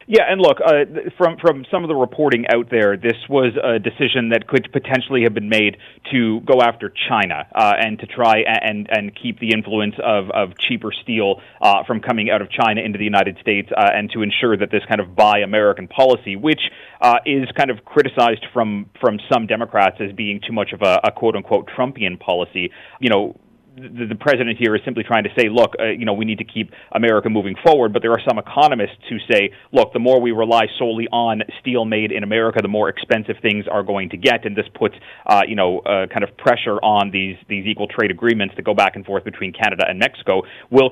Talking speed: 225 wpm